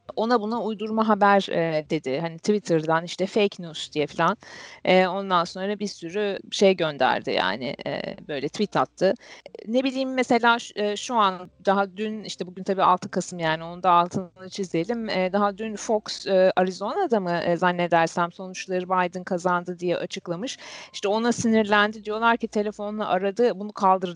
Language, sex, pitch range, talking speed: Turkish, female, 180-220 Hz, 145 wpm